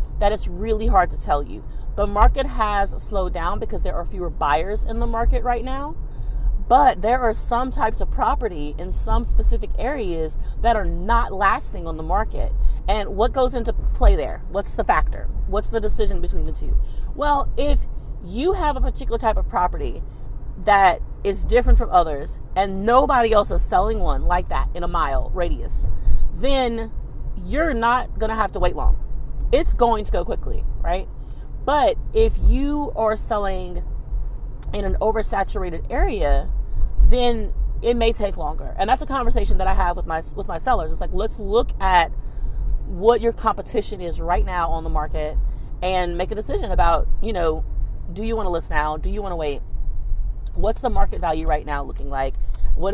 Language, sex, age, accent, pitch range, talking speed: English, female, 40-59, American, 165-230 Hz, 185 wpm